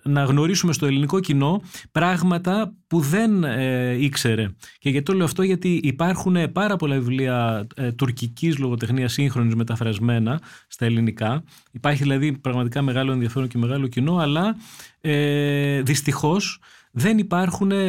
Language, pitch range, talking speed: Greek, 125-160 Hz, 135 wpm